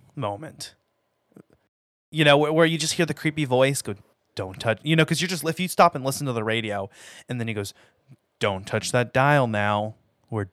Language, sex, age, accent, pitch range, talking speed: English, male, 20-39, American, 115-150 Hz, 205 wpm